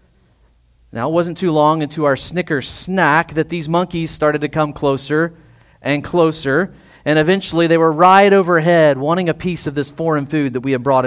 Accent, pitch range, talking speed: American, 120-170 Hz, 190 wpm